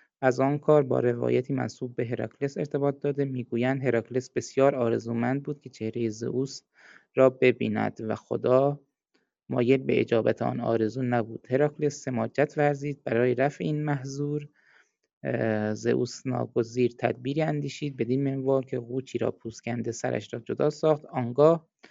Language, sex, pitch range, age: Persian, male, 115-140 Hz, 20-39